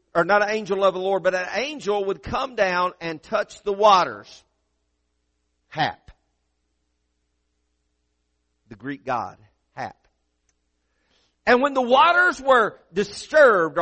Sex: male